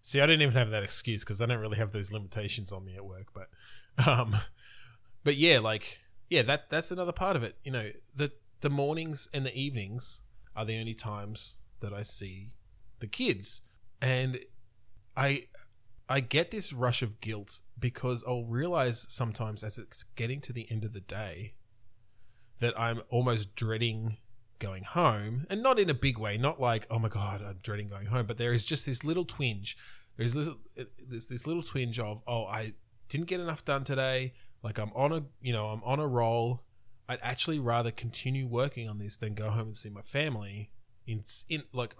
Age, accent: 20-39, Australian